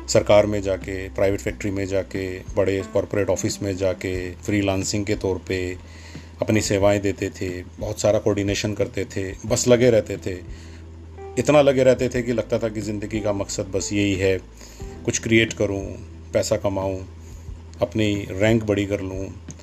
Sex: male